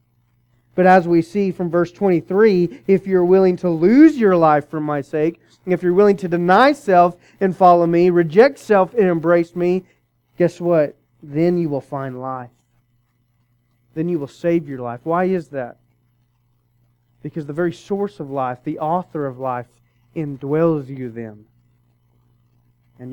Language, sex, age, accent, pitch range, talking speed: English, male, 30-49, American, 120-170 Hz, 160 wpm